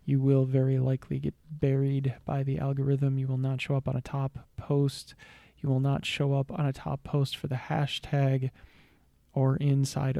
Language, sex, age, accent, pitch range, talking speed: English, male, 20-39, American, 130-140 Hz, 190 wpm